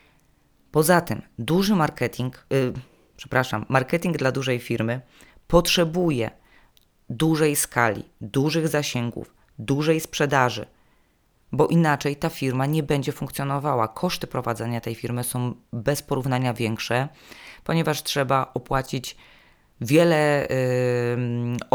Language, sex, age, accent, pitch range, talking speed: Polish, female, 20-39, native, 120-150 Hz, 100 wpm